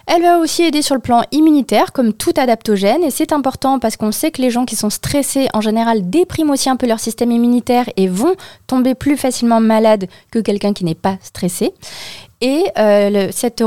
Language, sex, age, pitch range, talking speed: French, female, 20-39, 200-245 Hz, 210 wpm